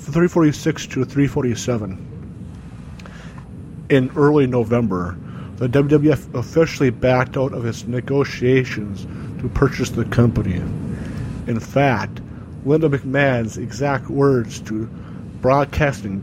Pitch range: 115-140 Hz